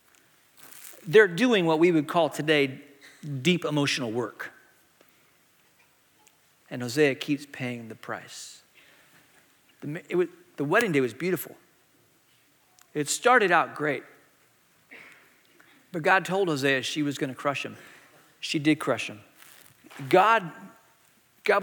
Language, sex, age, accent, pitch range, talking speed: English, male, 40-59, American, 140-185 Hz, 120 wpm